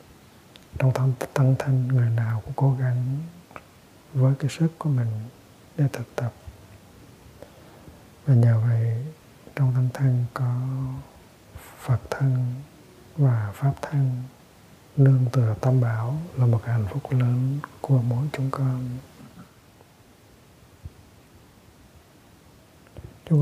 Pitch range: 120-135 Hz